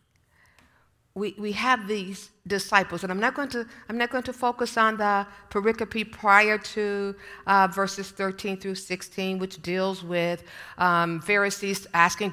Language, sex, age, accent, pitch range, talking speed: English, female, 50-69, American, 155-195 Hz, 150 wpm